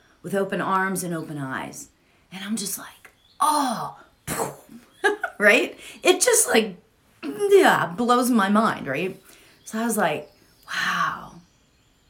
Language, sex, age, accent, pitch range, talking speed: English, female, 30-49, American, 175-250 Hz, 125 wpm